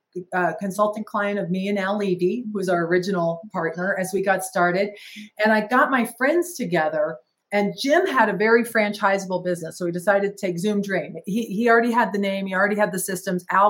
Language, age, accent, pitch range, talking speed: English, 40-59, American, 190-240 Hz, 220 wpm